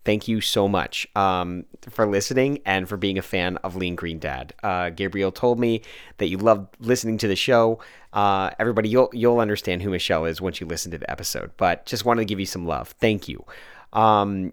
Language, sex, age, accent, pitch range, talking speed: English, male, 30-49, American, 100-150 Hz, 215 wpm